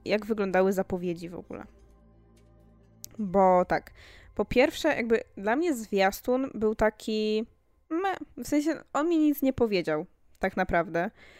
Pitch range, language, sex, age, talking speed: 185-215 Hz, Polish, female, 20-39, 125 wpm